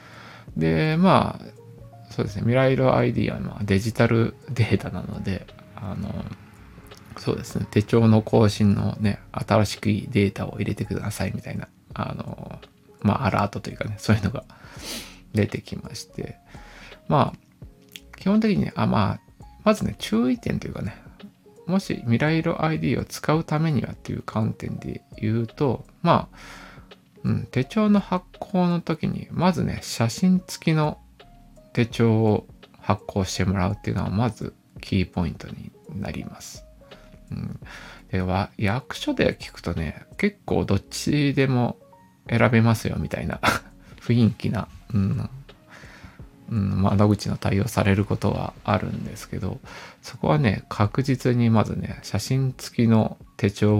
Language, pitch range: Japanese, 100-130 Hz